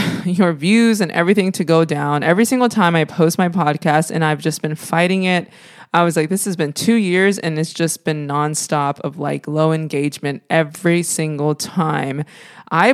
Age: 20-39